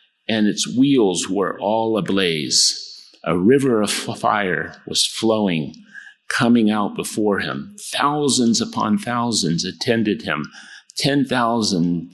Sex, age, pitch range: male, 50-69, 105-140 Hz